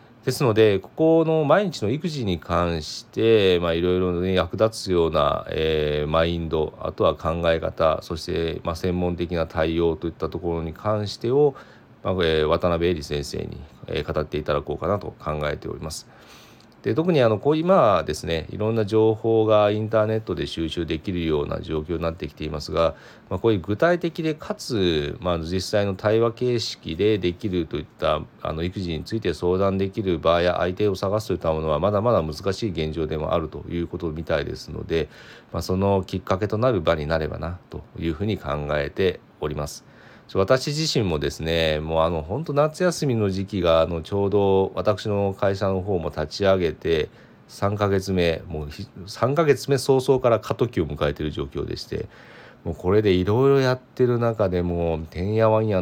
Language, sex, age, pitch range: Japanese, male, 30-49, 80-110 Hz